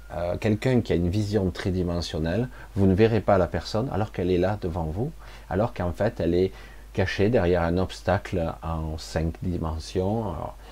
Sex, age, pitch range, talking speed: male, 40-59, 80-105 Hz, 180 wpm